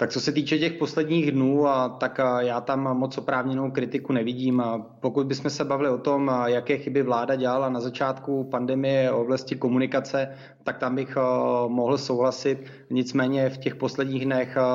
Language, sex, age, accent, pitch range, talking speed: Czech, male, 20-39, native, 125-135 Hz, 165 wpm